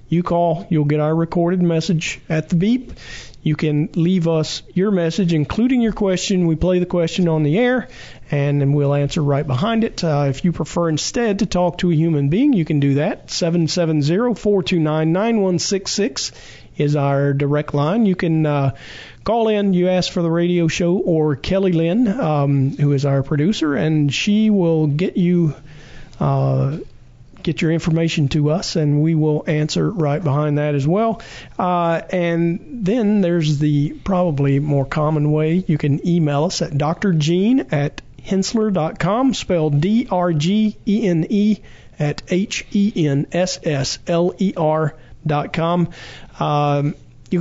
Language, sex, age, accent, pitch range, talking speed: English, male, 40-59, American, 145-185 Hz, 145 wpm